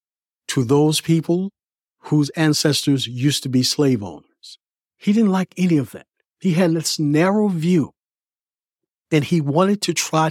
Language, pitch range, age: English, 130-170 Hz, 50-69